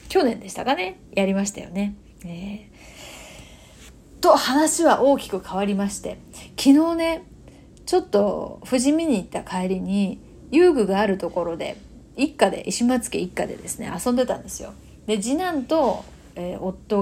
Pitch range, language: 190-280 Hz, Japanese